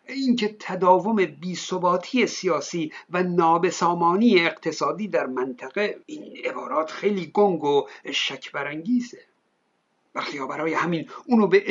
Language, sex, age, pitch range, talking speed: Persian, male, 60-79, 170-225 Hz, 105 wpm